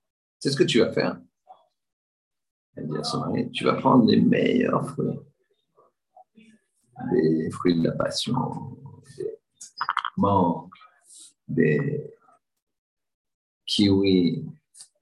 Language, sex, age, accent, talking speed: French, male, 50-69, French, 105 wpm